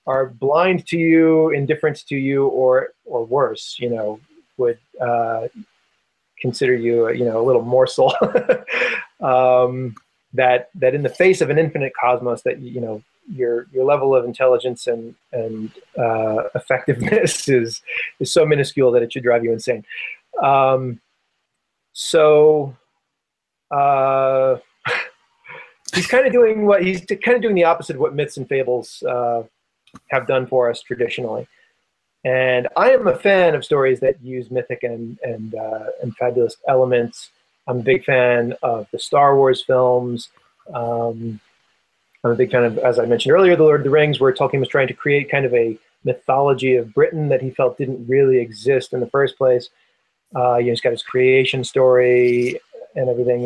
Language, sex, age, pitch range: English, male, 30-49, 120-150 Hz